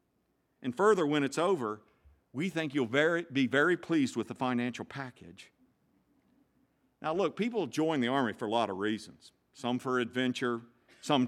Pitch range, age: 125-205 Hz, 50-69